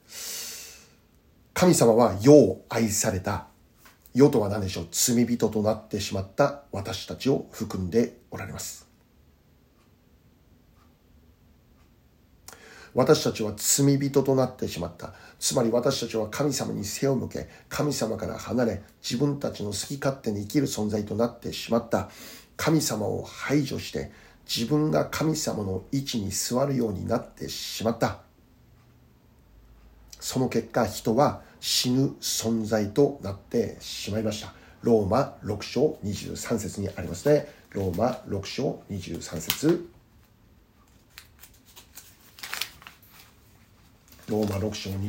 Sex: male